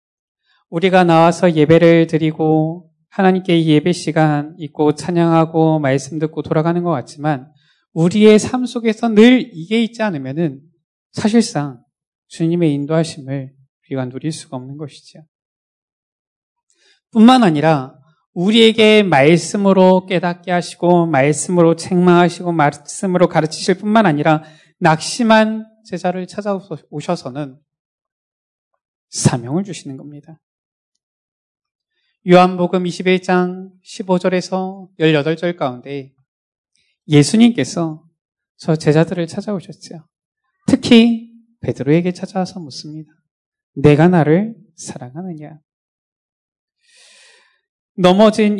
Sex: male